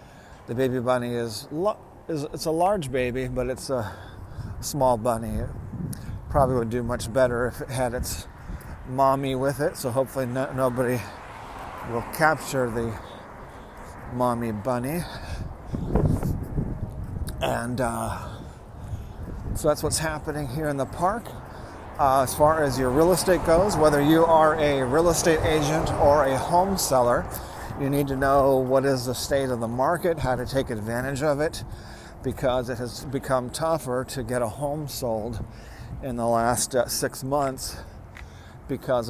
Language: English